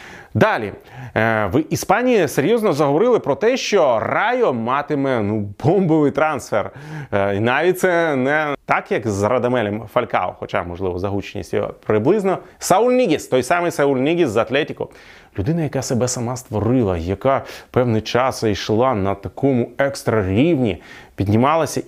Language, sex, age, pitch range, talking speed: Ukrainian, male, 30-49, 100-140 Hz, 130 wpm